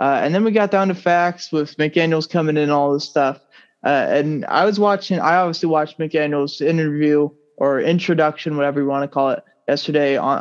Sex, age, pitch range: male, 20-39, 145-180 Hz